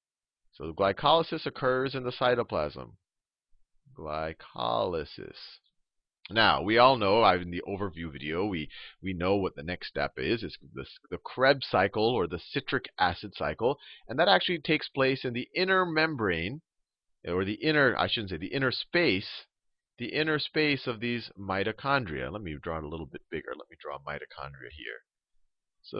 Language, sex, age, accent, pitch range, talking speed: English, male, 40-59, American, 90-140 Hz, 165 wpm